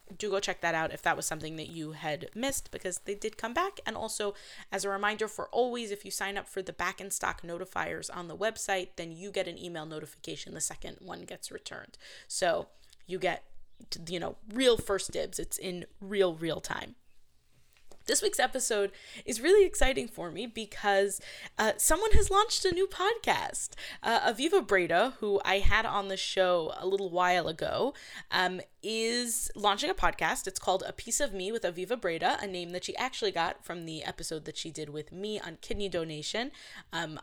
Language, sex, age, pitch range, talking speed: English, female, 10-29, 175-230 Hz, 200 wpm